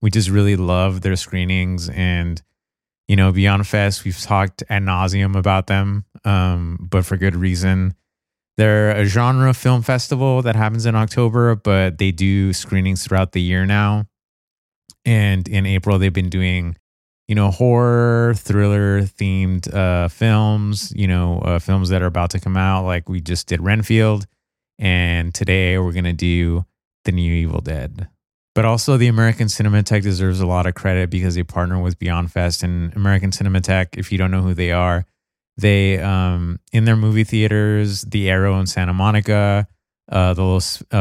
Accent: American